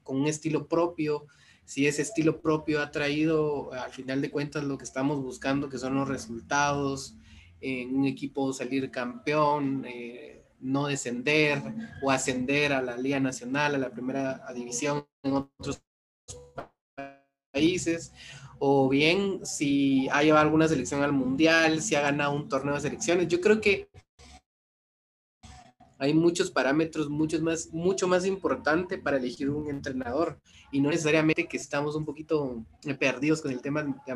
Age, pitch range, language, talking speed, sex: 30-49, 135-165 Hz, Spanish, 150 wpm, male